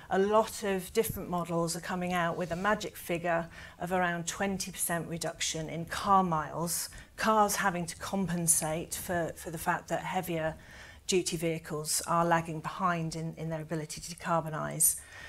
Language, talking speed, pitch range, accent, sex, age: English, 155 wpm, 165-185 Hz, British, female, 40-59